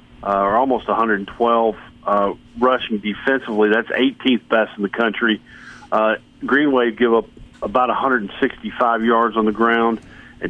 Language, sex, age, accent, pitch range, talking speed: English, male, 50-69, American, 105-125 Hz, 145 wpm